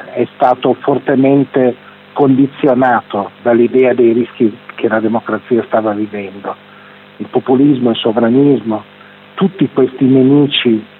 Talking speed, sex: 105 wpm, male